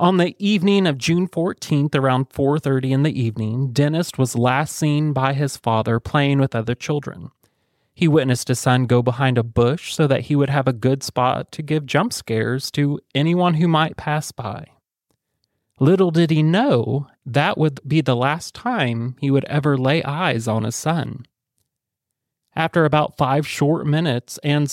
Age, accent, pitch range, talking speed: 30-49, American, 130-155 Hz, 175 wpm